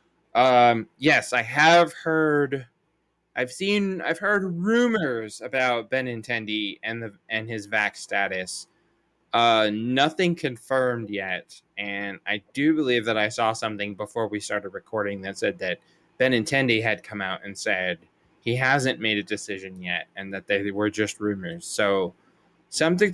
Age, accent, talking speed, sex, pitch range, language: 20-39, American, 150 wpm, male, 105-130 Hz, English